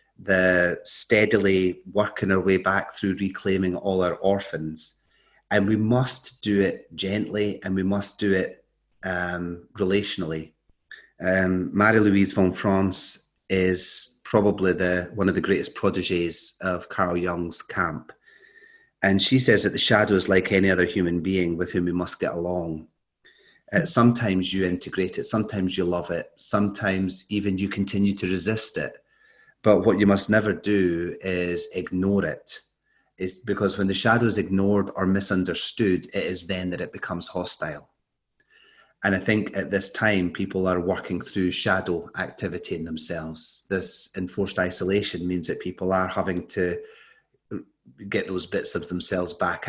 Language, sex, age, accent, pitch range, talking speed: English, male, 30-49, British, 90-100 Hz, 155 wpm